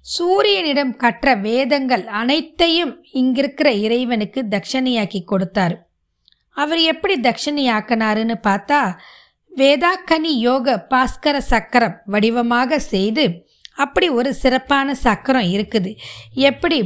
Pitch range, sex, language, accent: 215-275 Hz, female, Tamil, native